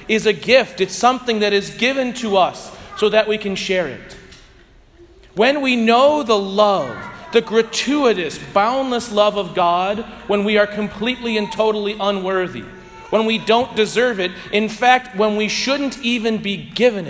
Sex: male